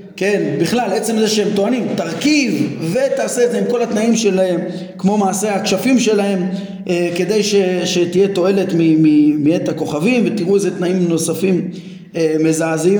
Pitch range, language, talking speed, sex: 185-235 Hz, Hebrew, 145 wpm, male